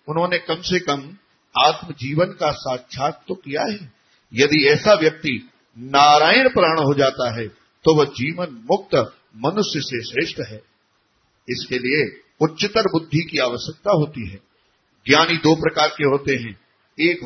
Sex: male